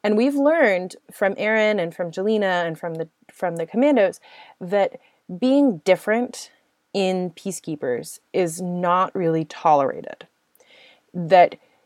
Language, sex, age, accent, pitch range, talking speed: English, female, 20-39, American, 175-230 Hz, 115 wpm